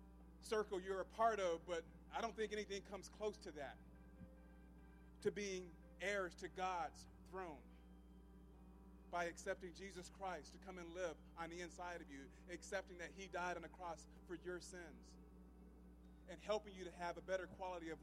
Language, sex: English, male